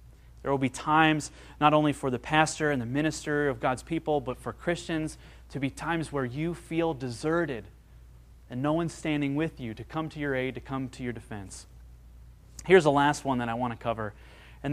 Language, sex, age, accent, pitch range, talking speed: English, male, 30-49, American, 120-155 Hz, 220 wpm